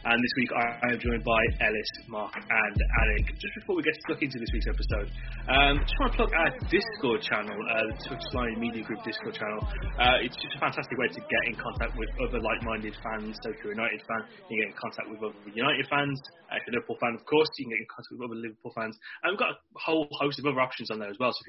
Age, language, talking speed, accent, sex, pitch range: 20-39, English, 275 wpm, British, male, 110-140 Hz